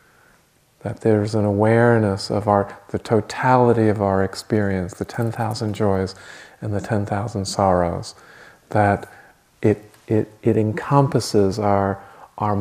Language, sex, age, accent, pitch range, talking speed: English, male, 40-59, American, 100-120 Hz, 120 wpm